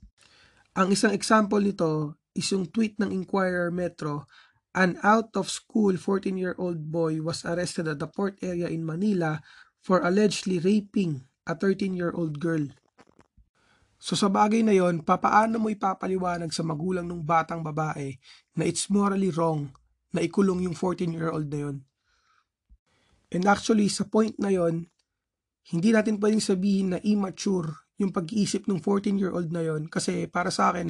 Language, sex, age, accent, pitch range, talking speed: Filipino, male, 20-39, native, 160-200 Hz, 145 wpm